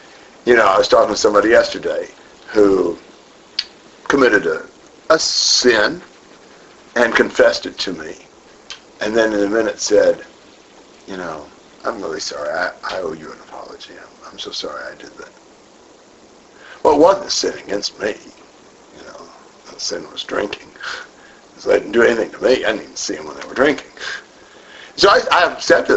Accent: American